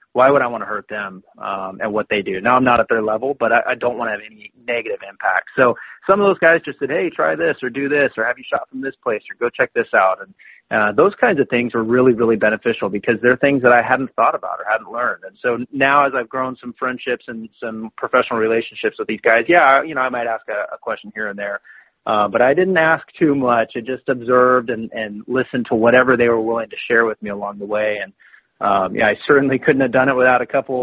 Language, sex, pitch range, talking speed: English, male, 110-130 Hz, 270 wpm